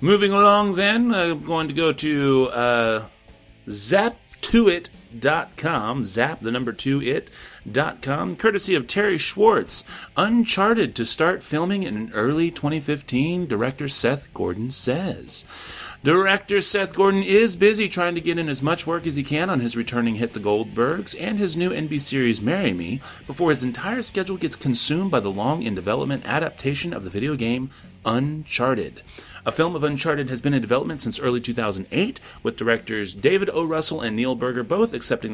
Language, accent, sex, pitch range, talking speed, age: English, American, male, 115-180 Hz, 165 wpm, 30-49